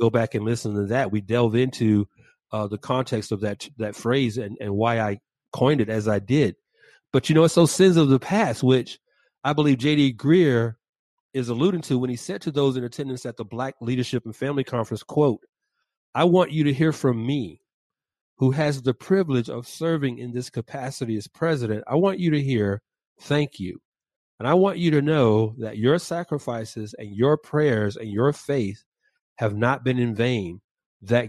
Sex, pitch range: male, 115-155 Hz